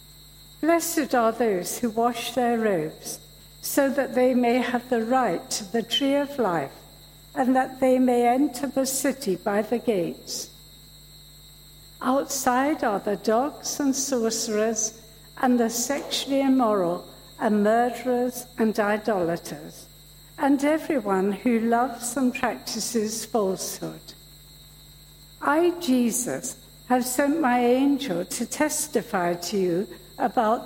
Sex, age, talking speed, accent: female, 60-79, 120 wpm, British